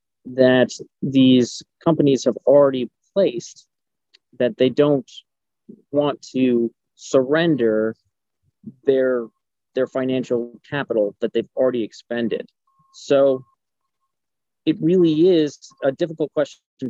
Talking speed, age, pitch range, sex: 95 wpm, 40-59, 120-145 Hz, male